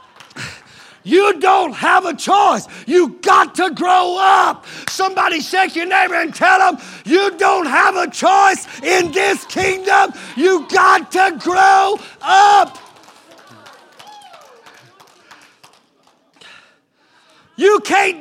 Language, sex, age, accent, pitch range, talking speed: English, male, 50-69, American, 245-375 Hz, 105 wpm